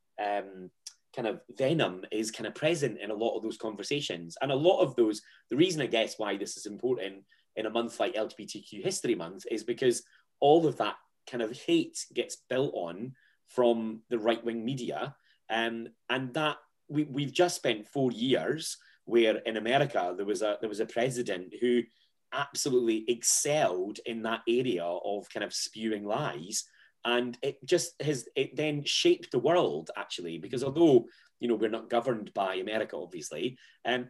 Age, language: 30-49, English